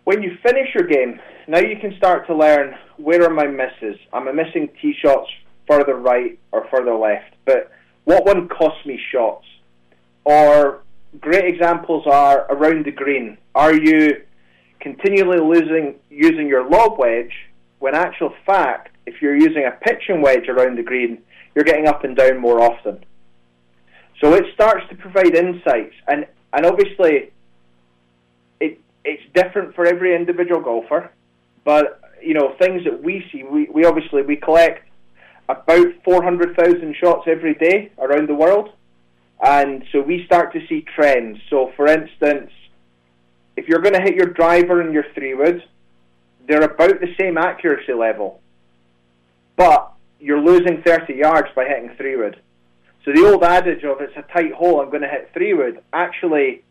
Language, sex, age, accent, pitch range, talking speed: English, male, 20-39, British, 115-175 Hz, 160 wpm